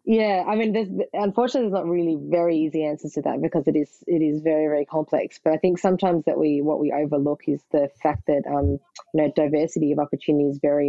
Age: 20-39